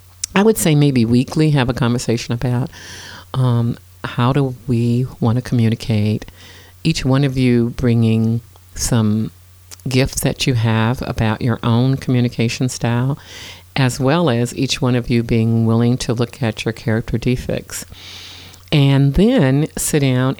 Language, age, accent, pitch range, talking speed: English, 50-69, American, 110-140 Hz, 145 wpm